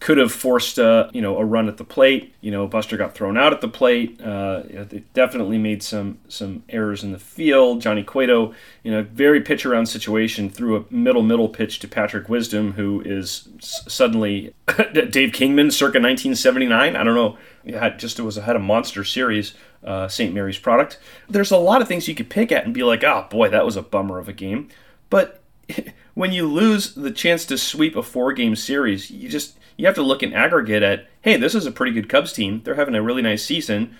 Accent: American